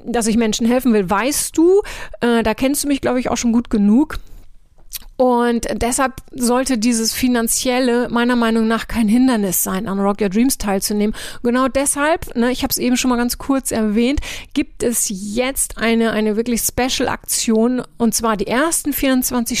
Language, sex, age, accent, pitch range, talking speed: German, female, 30-49, German, 215-255 Hz, 180 wpm